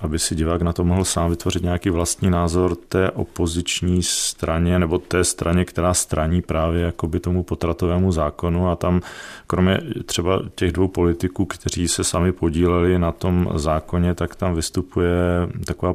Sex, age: male, 40-59